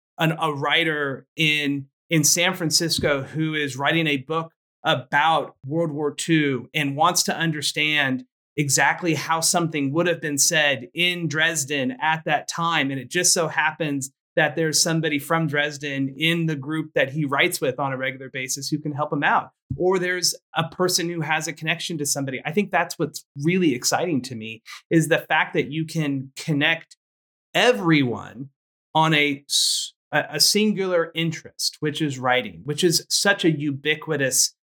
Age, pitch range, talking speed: 30-49, 145-175 Hz, 165 wpm